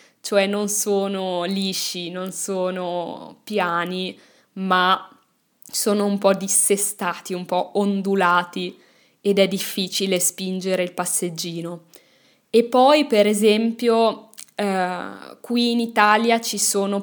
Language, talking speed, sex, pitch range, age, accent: Italian, 110 wpm, female, 185-210 Hz, 10-29, native